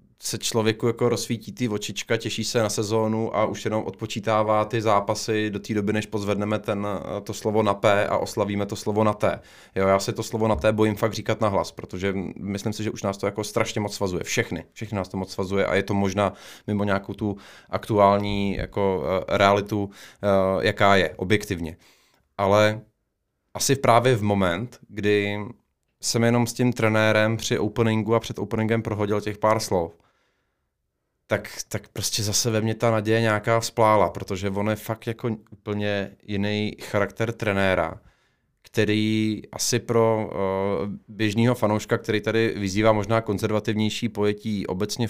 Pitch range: 100-110 Hz